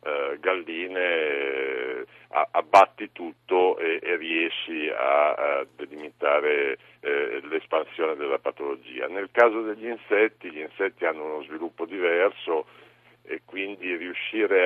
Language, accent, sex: Italian, native, male